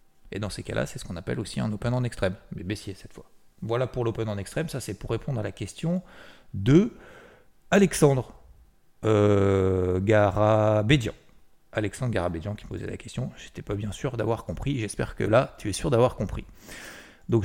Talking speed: 185 wpm